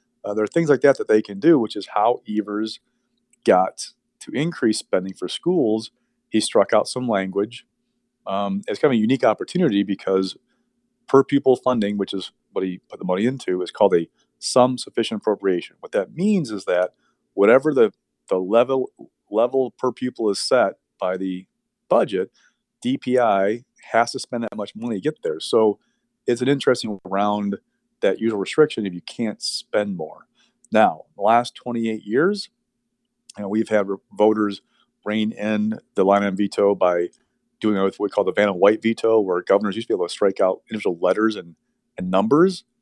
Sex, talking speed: male, 180 wpm